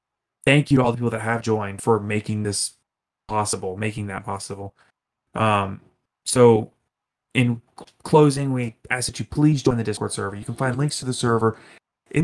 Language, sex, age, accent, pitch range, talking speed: English, male, 20-39, American, 110-130 Hz, 180 wpm